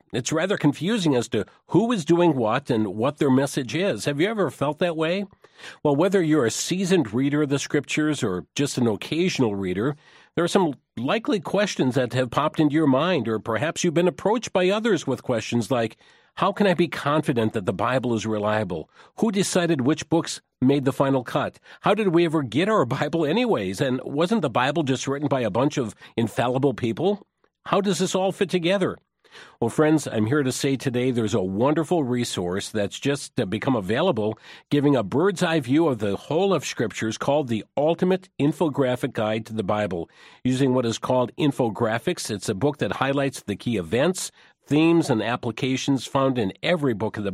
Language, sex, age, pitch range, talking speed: English, male, 50-69, 120-160 Hz, 195 wpm